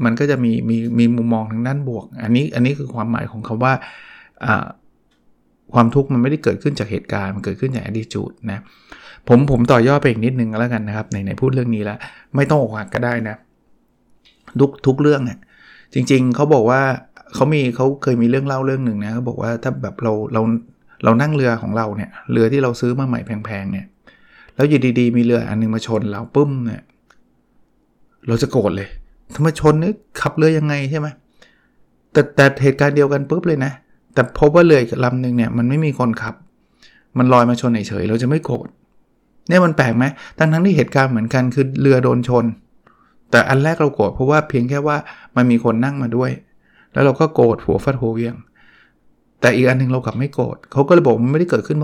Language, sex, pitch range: Thai, male, 115-140 Hz